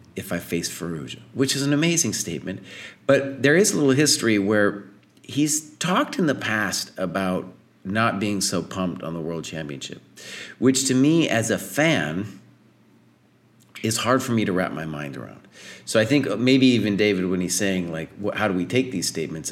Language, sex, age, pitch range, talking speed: English, male, 40-59, 95-135 Hz, 190 wpm